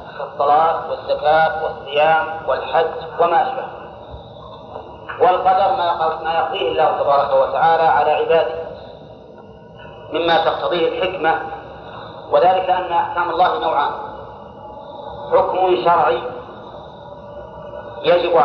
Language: Arabic